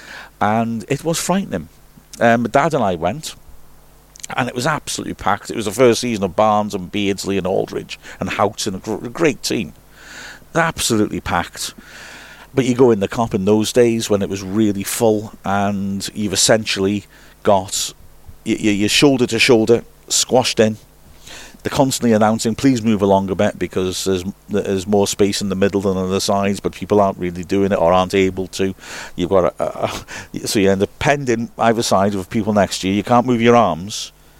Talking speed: 190 wpm